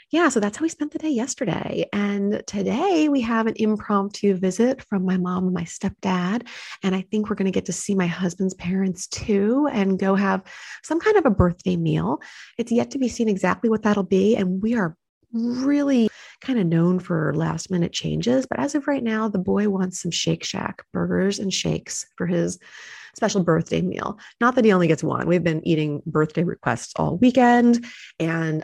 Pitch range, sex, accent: 160-210 Hz, female, American